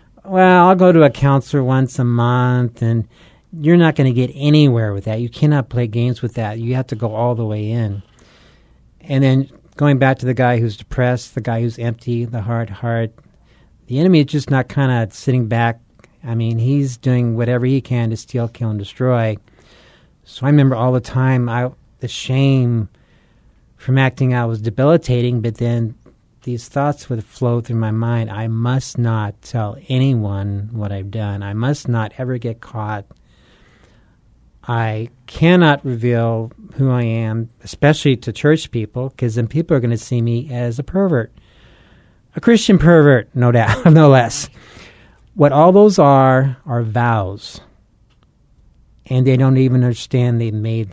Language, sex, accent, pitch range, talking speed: English, male, American, 115-135 Hz, 170 wpm